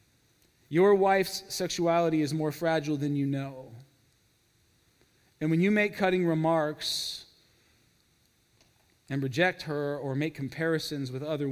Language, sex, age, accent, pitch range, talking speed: English, male, 40-59, American, 125-155 Hz, 120 wpm